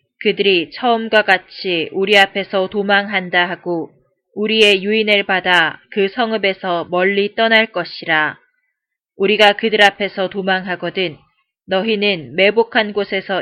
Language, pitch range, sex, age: Korean, 180-210 Hz, female, 20-39